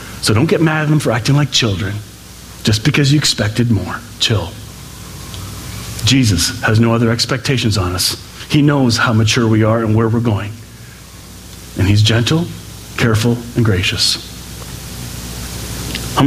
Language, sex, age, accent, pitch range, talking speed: English, male, 40-59, American, 105-130 Hz, 150 wpm